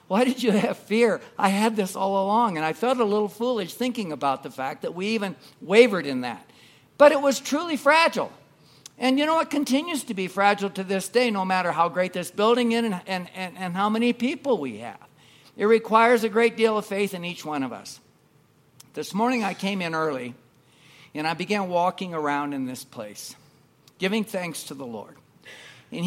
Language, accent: English, American